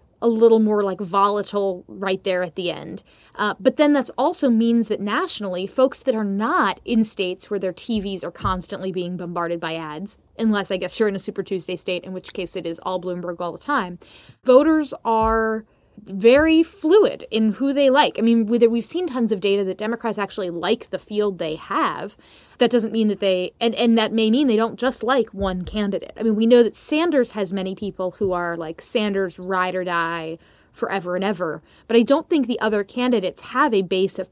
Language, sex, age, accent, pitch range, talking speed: English, female, 20-39, American, 185-240 Hz, 210 wpm